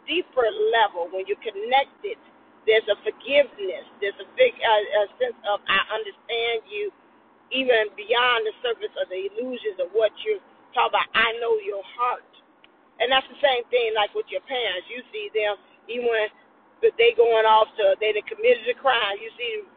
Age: 40-59